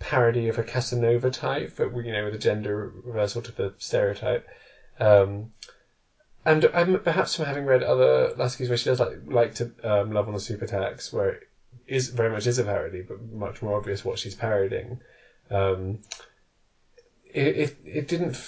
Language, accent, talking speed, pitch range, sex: English, British, 180 wpm, 105-125 Hz, male